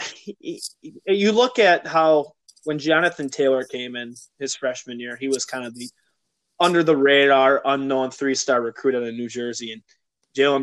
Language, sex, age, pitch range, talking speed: English, male, 20-39, 130-155 Hz, 160 wpm